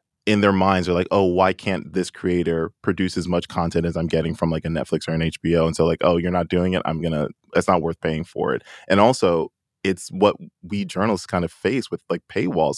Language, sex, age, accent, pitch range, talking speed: English, male, 20-39, American, 80-90 Hz, 245 wpm